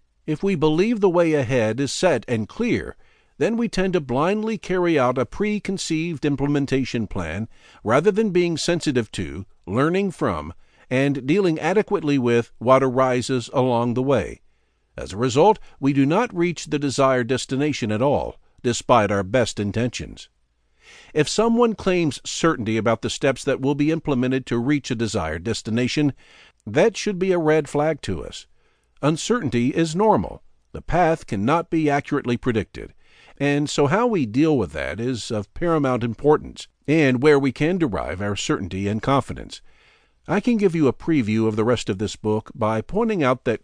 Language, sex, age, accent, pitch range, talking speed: English, male, 60-79, American, 115-165 Hz, 170 wpm